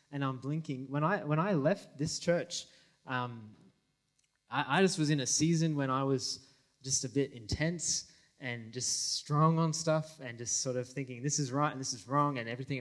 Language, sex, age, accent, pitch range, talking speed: English, male, 20-39, Australian, 130-165 Hz, 205 wpm